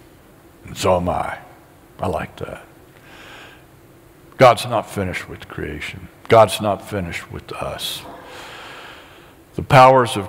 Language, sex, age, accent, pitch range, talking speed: English, male, 60-79, American, 95-120 Hz, 115 wpm